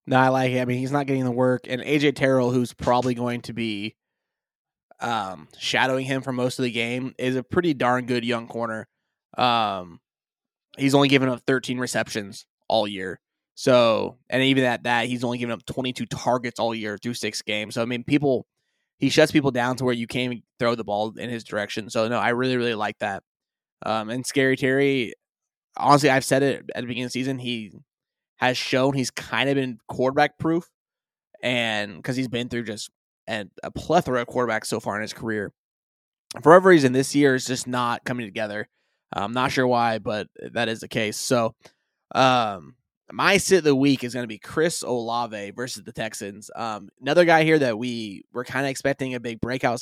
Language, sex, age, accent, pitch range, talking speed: English, male, 20-39, American, 115-130 Hz, 210 wpm